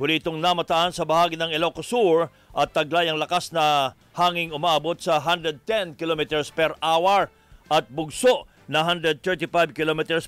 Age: 50-69